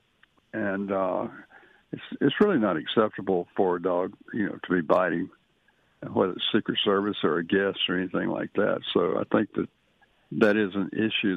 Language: English